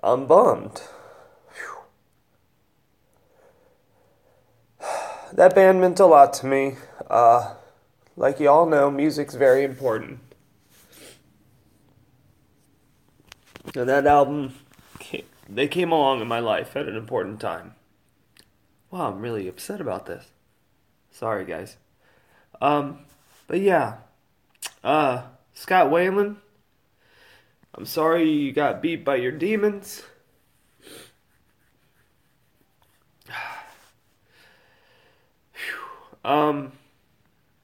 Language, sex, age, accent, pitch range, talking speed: English, male, 30-49, American, 130-160 Hz, 90 wpm